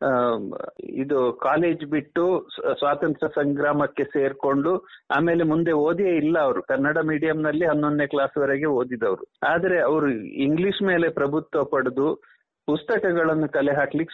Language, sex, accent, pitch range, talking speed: Kannada, male, native, 150-185 Hz, 105 wpm